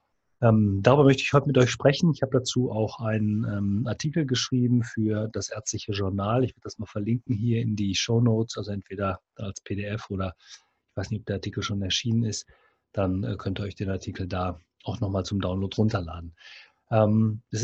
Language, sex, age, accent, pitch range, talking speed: German, male, 30-49, German, 105-120 Hz, 185 wpm